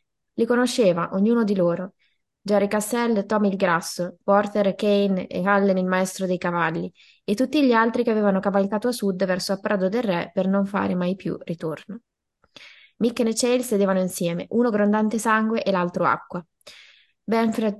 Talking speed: 170 wpm